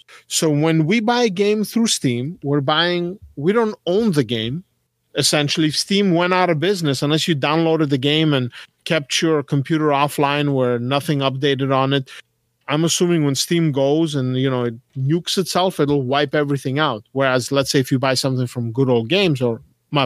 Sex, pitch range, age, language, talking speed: male, 125-160 Hz, 40-59, English, 195 wpm